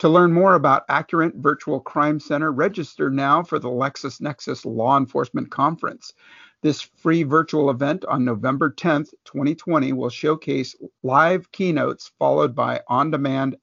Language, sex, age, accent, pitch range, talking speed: English, male, 50-69, American, 135-170 Hz, 135 wpm